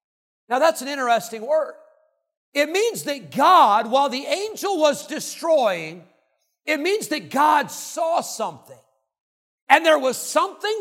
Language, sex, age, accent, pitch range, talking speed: English, male, 50-69, American, 210-285 Hz, 135 wpm